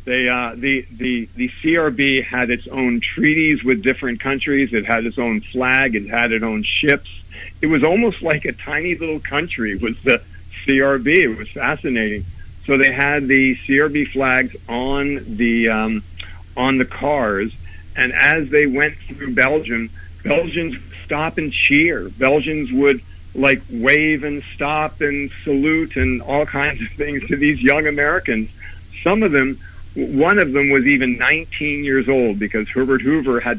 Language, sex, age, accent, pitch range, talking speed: English, male, 60-79, American, 110-140 Hz, 165 wpm